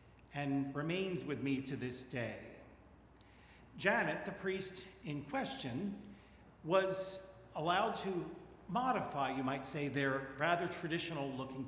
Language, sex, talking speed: English, male, 115 wpm